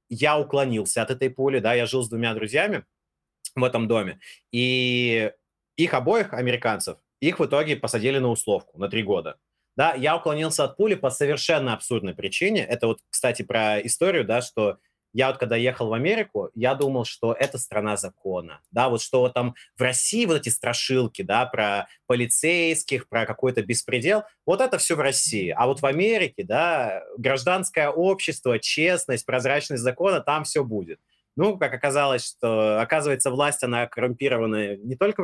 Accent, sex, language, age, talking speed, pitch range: native, male, Russian, 30-49, 165 wpm, 115-145 Hz